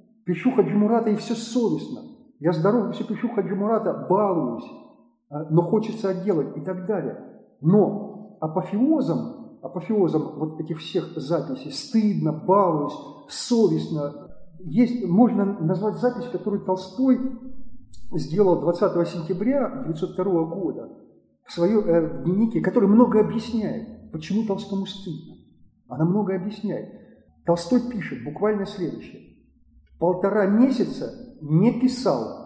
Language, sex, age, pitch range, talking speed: Russian, male, 40-59, 180-235 Hz, 105 wpm